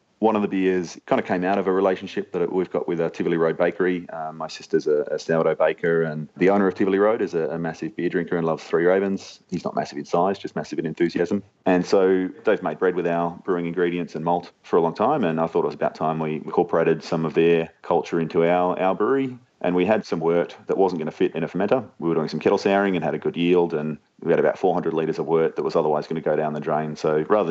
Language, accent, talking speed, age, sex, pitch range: English, Australian, 275 wpm, 30-49, male, 80-100 Hz